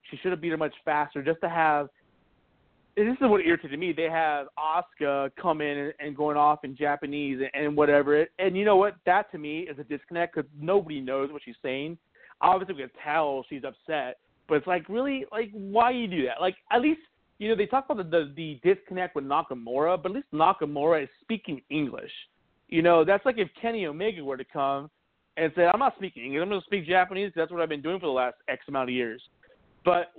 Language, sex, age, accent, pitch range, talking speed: English, male, 30-49, American, 140-180 Hz, 240 wpm